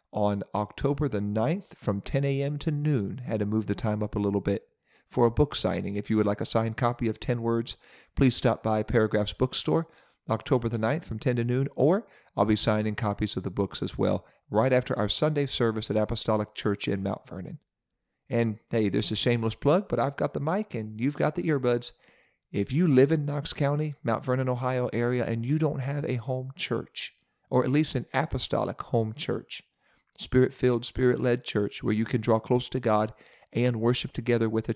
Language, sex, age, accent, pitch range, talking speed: English, male, 40-59, American, 110-135 Hz, 210 wpm